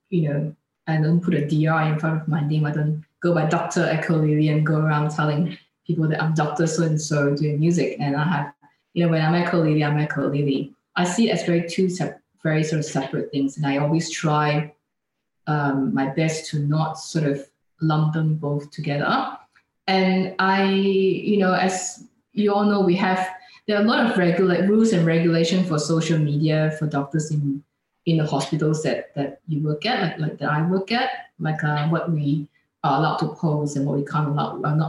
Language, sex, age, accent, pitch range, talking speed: English, female, 20-39, Malaysian, 150-185 Hz, 210 wpm